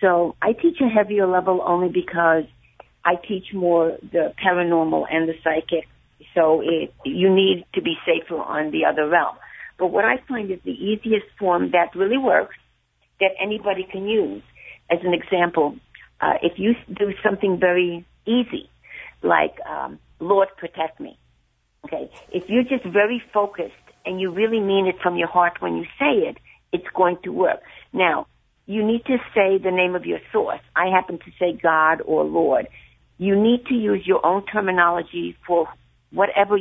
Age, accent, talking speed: 50-69, American, 170 wpm